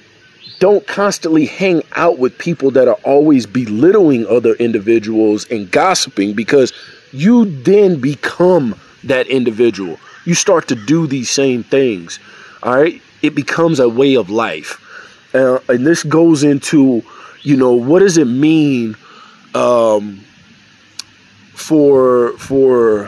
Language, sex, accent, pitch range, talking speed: English, male, American, 120-160 Hz, 125 wpm